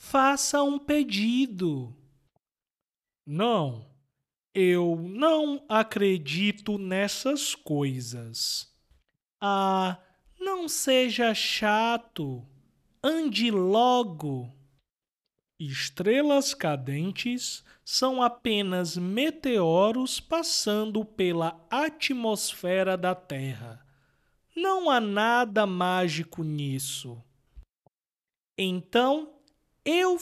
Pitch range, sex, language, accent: 150-250 Hz, male, Portuguese, Brazilian